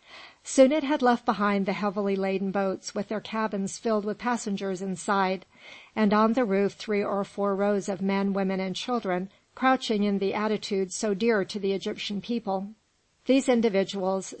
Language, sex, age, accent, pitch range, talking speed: English, female, 50-69, American, 195-225 Hz, 170 wpm